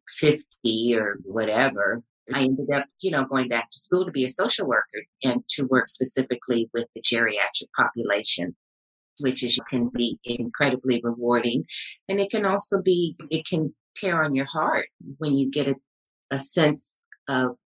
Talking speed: 165 wpm